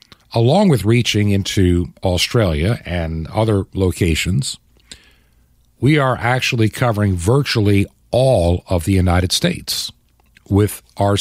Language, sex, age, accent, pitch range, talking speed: English, male, 50-69, American, 95-130 Hz, 105 wpm